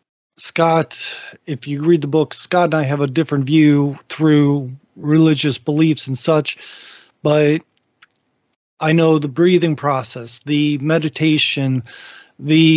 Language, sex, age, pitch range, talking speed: English, male, 40-59, 135-155 Hz, 125 wpm